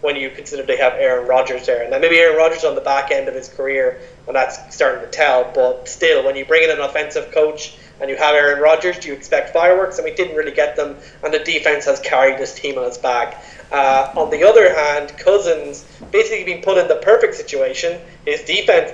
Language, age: English, 20-39